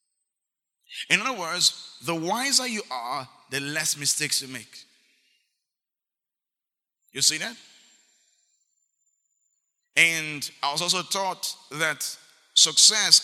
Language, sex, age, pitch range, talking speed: English, male, 30-49, 150-230 Hz, 100 wpm